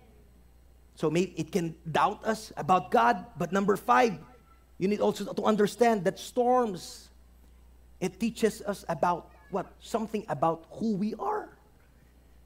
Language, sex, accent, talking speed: English, male, Filipino, 135 wpm